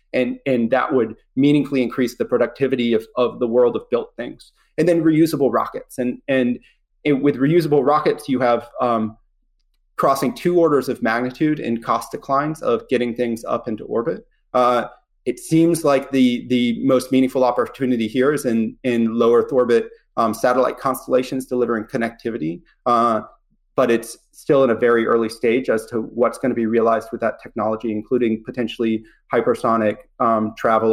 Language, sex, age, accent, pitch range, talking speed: English, male, 30-49, American, 115-140 Hz, 170 wpm